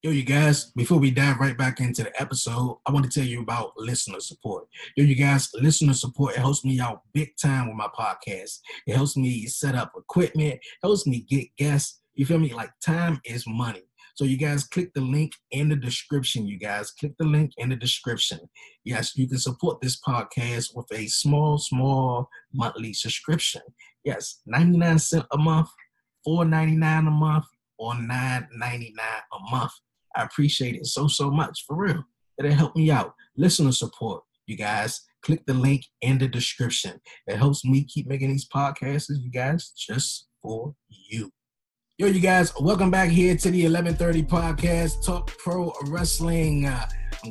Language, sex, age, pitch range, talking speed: English, male, 20-39, 125-155 Hz, 175 wpm